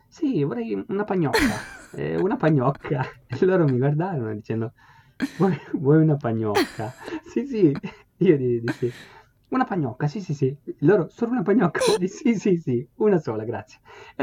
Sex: male